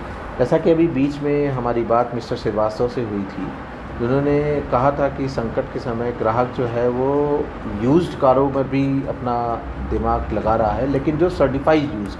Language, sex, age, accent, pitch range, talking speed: Hindi, male, 40-59, native, 105-135 Hz, 175 wpm